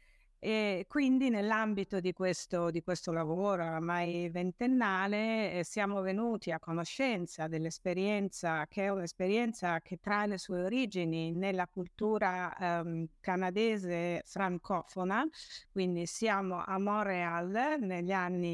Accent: native